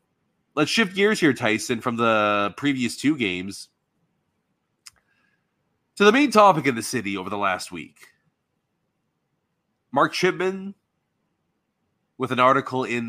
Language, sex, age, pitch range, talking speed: English, male, 30-49, 110-165 Hz, 125 wpm